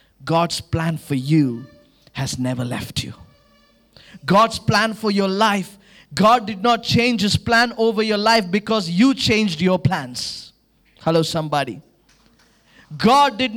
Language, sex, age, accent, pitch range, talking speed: English, male, 20-39, Indian, 150-230 Hz, 135 wpm